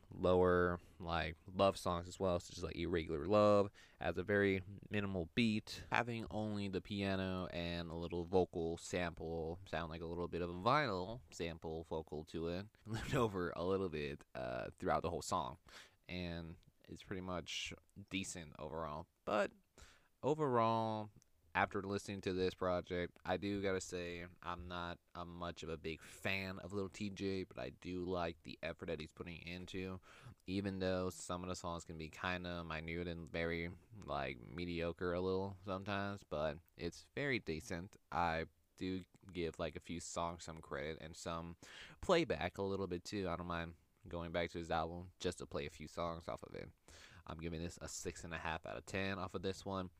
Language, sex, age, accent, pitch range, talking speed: English, male, 20-39, American, 85-95 Hz, 185 wpm